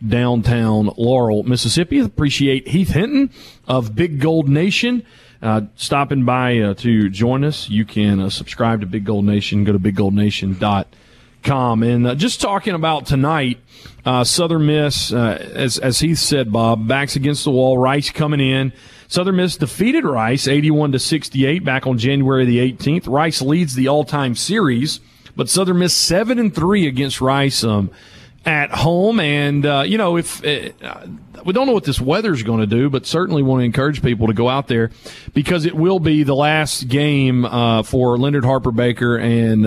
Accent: American